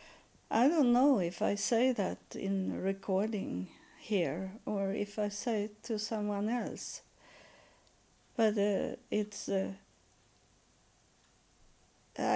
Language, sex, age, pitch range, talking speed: English, female, 50-69, 200-245 Hz, 105 wpm